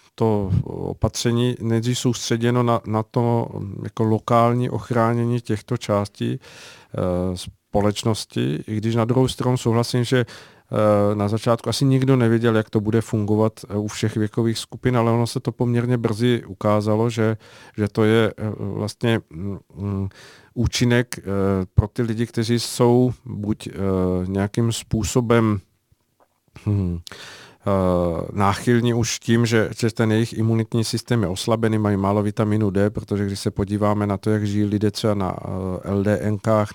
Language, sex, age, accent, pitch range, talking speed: Czech, male, 50-69, native, 100-115 Hz, 130 wpm